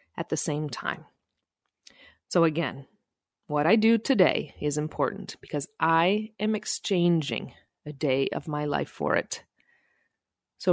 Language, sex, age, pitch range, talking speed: English, female, 30-49, 150-225 Hz, 135 wpm